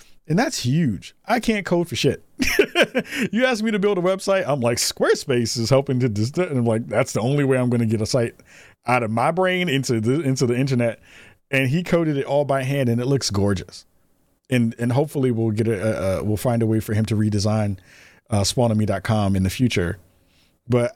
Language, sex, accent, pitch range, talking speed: English, male, American, 105-135 Hz, 220 wpm